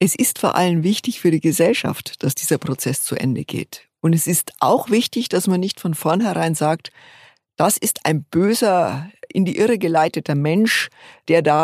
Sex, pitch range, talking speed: female, 155-195 Hz, 185 wpm